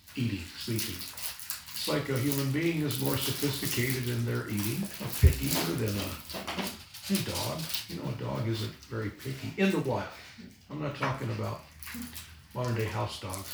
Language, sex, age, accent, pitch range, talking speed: English, male, 60-79, American, 95-135 Hz, 165 wpm